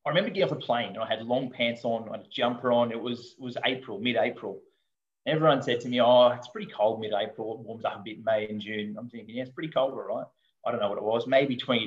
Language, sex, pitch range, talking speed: English, male, 115-160 Hz, 285 wpm